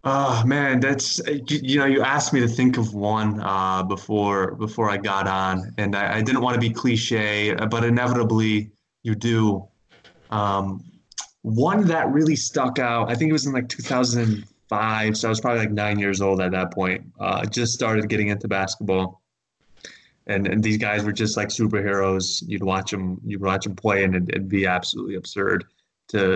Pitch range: 100-115 Hz